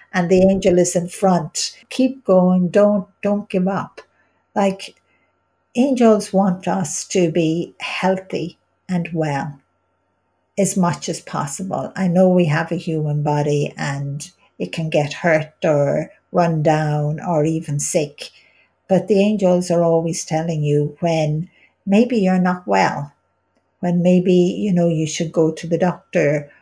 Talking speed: 145 wpm